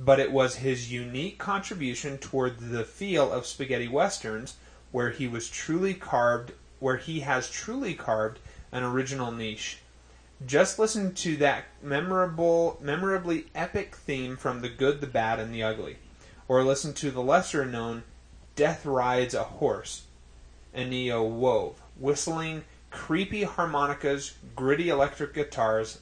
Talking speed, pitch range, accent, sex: 135 wpm, 115-145 Hz, American, male